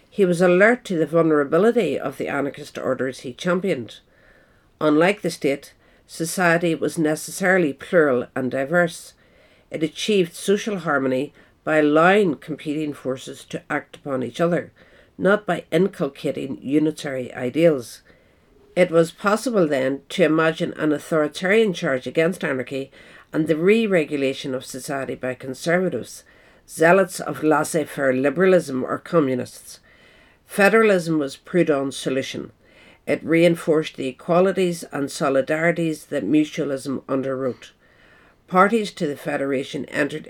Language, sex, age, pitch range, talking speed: English, female, 60-79, 140-175 Hz, 120 wpm